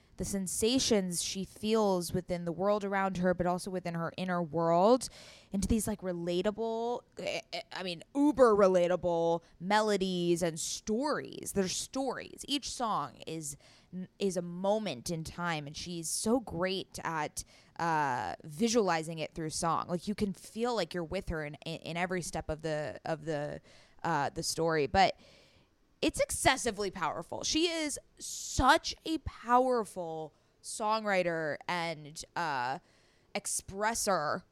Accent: American